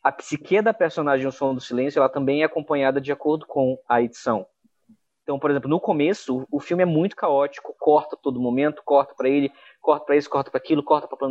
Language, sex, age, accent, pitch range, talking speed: Portuguese, male, 20-39, Brazilian, 140-175 Hz, 225 wpm